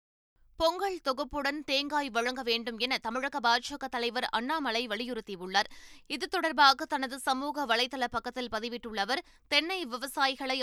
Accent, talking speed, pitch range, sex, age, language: native, 120 wpm, 240-290 Hz, female, 20-39, Tamil